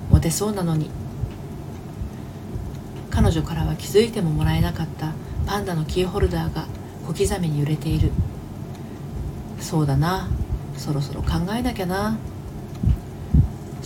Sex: female